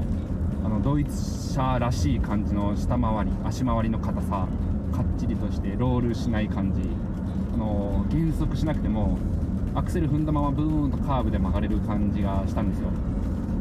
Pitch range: 90-105 Hz